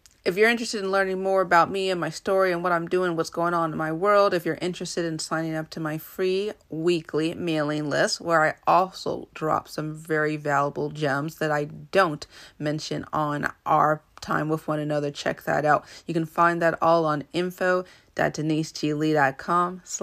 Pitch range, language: 155-195 Hz, English